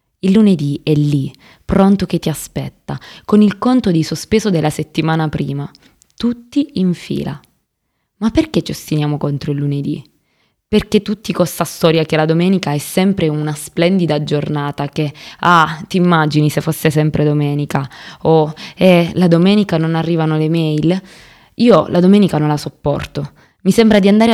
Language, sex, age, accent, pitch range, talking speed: Italian, female, 20-39, native, 150-195 Hz, 160 wpm